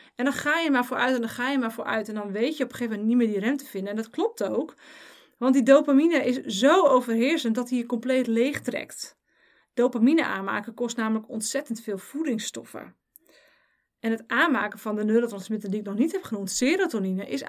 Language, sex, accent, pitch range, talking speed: Dutch, female, Dutch, 225-280 Hz, 215 wpm